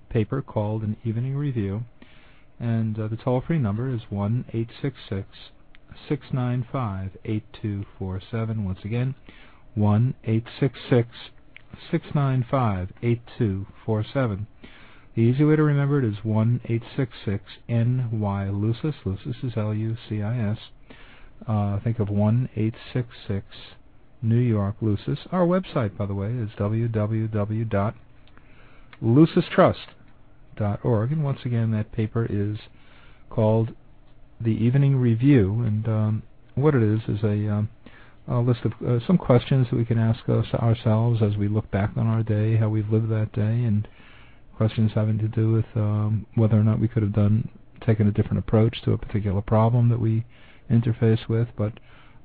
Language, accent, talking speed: English, American, 130 wpm